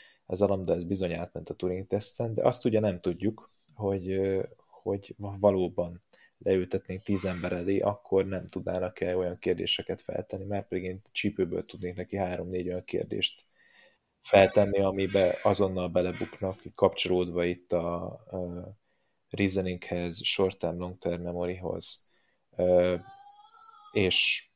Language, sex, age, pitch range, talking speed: Hungarian, male, 20-39, 90-105 Hz, 115 wpm